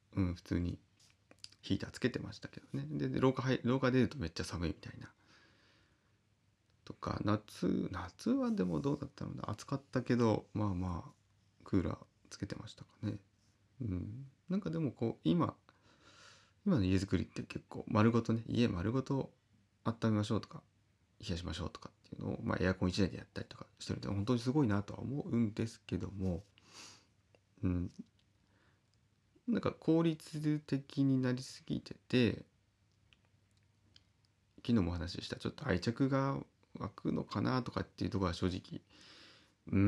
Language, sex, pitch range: Japanese, male, 95-125 Hz